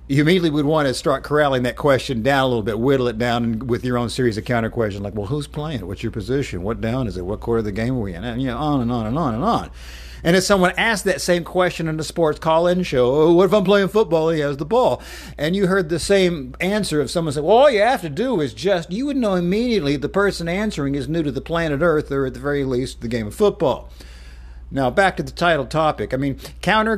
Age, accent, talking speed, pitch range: 50-69, American, 270 wpm, 120-165 Hz